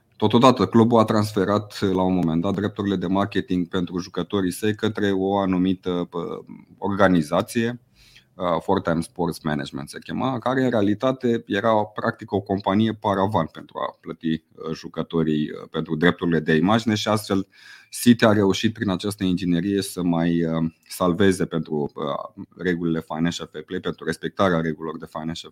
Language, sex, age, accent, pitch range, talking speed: Romanian, male, 30-49, native, 85-110 Hz, 140 wpm